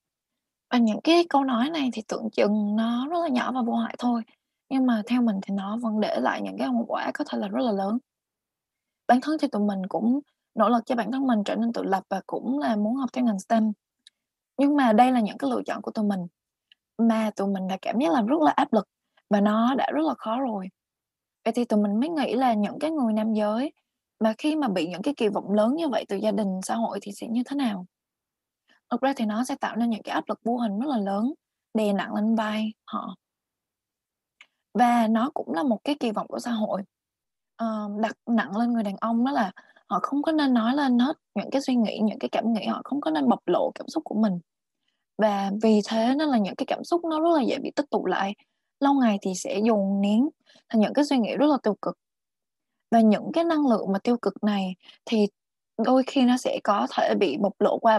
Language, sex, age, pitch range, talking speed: Vietnamese, female, 20-39, 210-265 Hz, 245 wpm